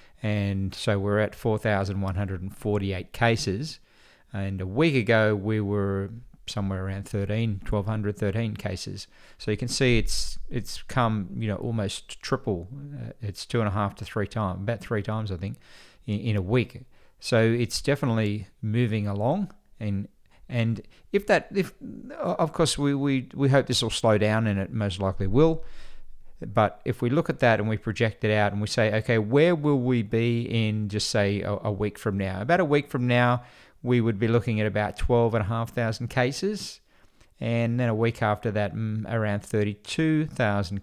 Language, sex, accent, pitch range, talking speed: English, male, Australian, 105-125 Hz, 180 wpm